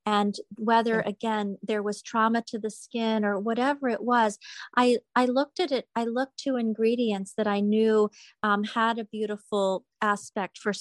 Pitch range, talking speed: 205-235 Hz, 170 wpm